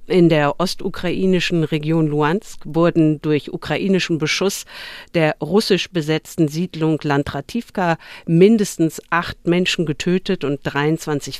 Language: German